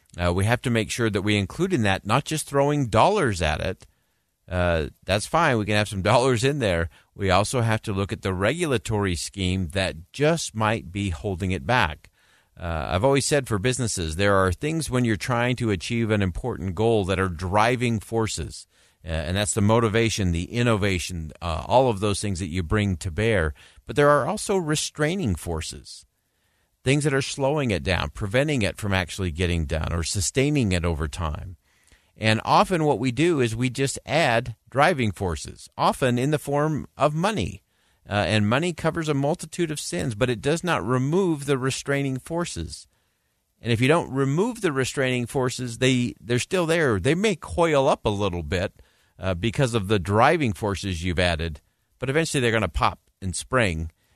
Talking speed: 190 wpm